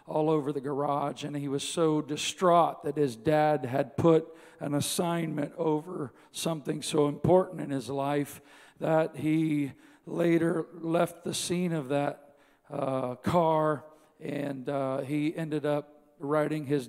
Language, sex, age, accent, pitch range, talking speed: English, male, 50-69, American, 145-170 Hz, 140 wpm